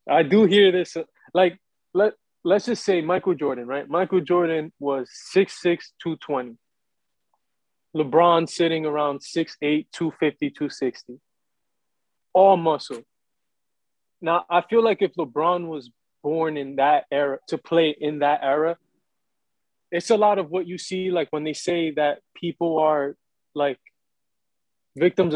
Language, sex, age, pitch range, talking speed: English, male, 20-39, 145-175 Hz, 135 wpm